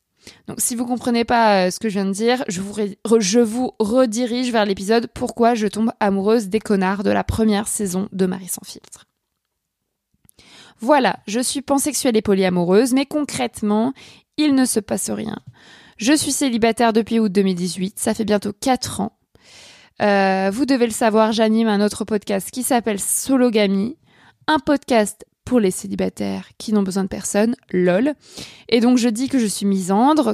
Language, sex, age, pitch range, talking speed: French, female, 20-39, 200-245 Hz, 175 wpm